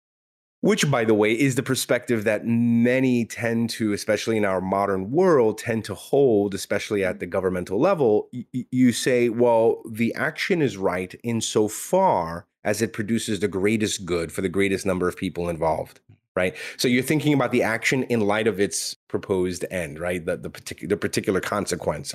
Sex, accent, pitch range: male, American, 95-125 Hz